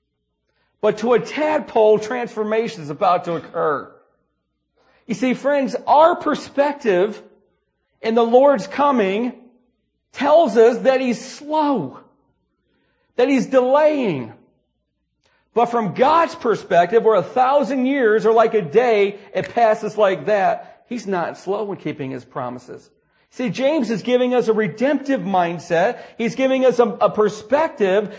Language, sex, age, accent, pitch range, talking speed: English, male, 40-59, American, 200-265 Hz, 135 wpm